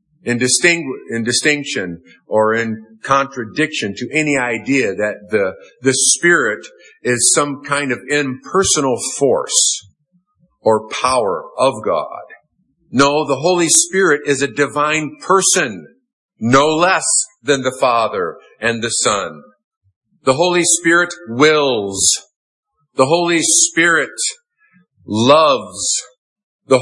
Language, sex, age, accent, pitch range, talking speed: English, male, 50-69, American, 130-180 Hz, 105 wpm